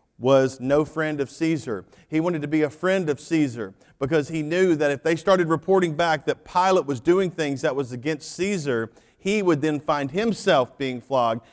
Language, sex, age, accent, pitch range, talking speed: English, male, 40-59, American, 130-160 Hz, 200 wpm